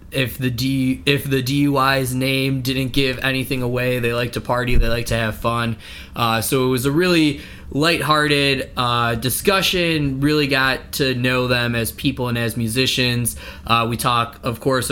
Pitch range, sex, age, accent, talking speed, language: 115-140 Hz, male, 20-39, American, 175 wpm, English